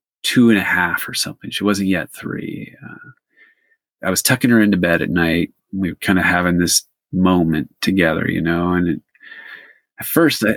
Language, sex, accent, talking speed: English, male, American, 180 wpm